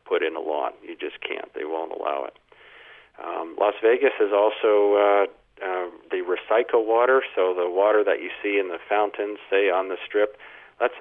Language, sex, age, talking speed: English, male, 40-59, 190 wpm